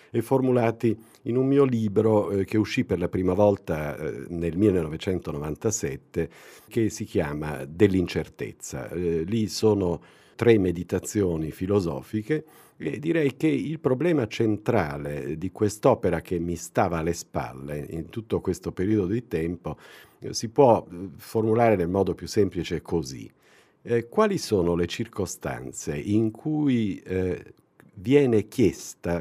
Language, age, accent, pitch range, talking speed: Italian, 50-69, native, 85-115 Hz, 130 wpm